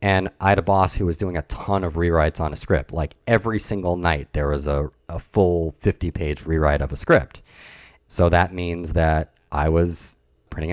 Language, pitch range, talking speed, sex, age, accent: English, 80-100 Hz, 205 wpm, male, 30-49, American